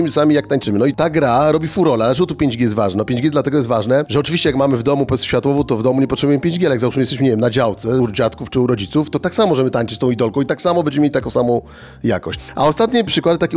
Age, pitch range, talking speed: 40-59, 120-150 Hz, 290 wpm